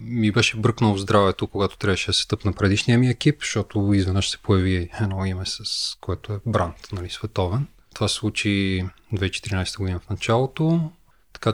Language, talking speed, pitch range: Bulgarian, 165 wpm, 95-110 Hz